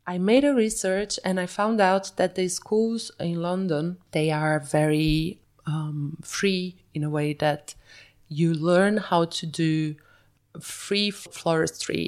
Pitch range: 155-185 Hz